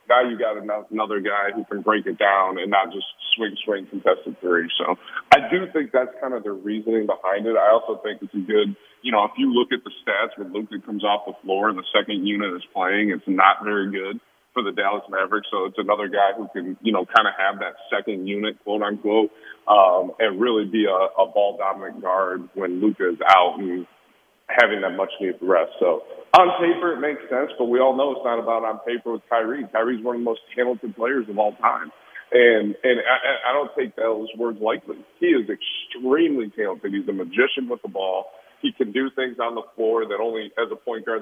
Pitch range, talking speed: 105-125 Hz, 225 wpm